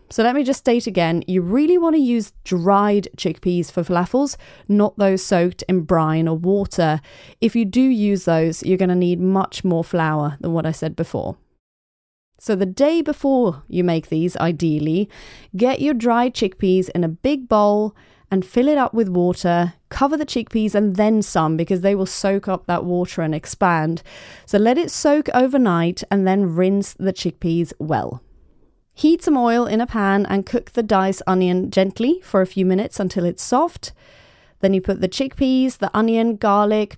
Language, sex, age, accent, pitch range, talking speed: English, female, 30-49, British, 175-230 Hz, 185 wpm